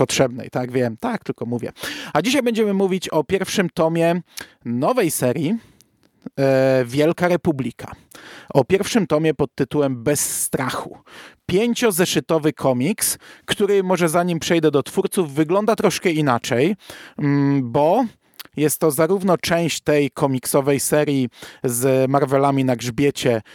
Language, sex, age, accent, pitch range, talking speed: Polish, male, 40-59, native, 135-175 Hz, 120 wpm